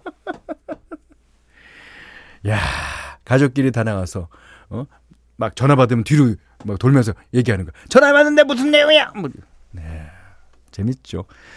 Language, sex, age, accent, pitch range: Korean, male, 40-59, native, 100-160 Hz